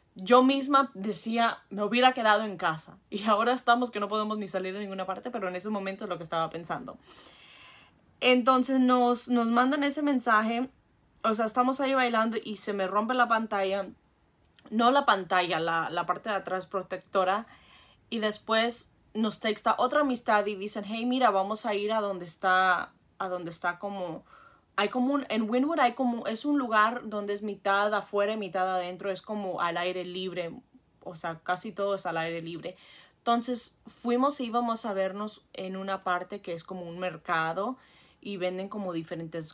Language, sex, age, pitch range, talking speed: English, female, 20-39, 185-240 Hz, 185 wpm